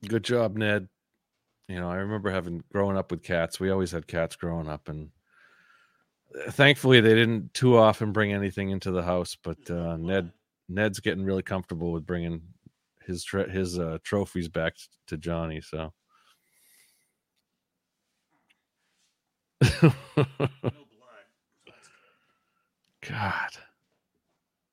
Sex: male